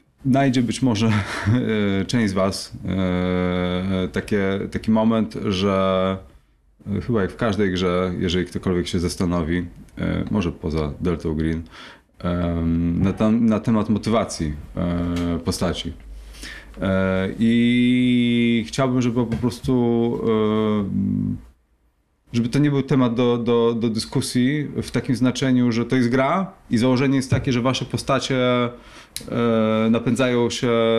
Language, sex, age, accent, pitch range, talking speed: Polish, male, 30-49, native, 95-125 Hz, 115 wpm